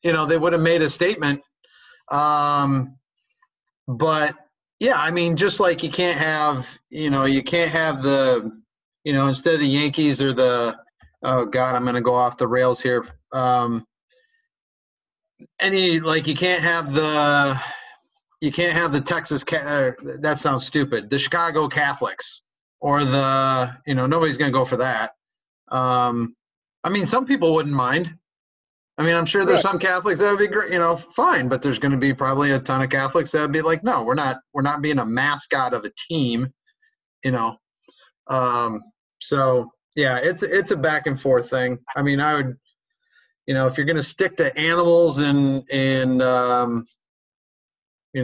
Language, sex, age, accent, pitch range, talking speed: English, male, 30-49, American, 130-165 Hz, 180 wpm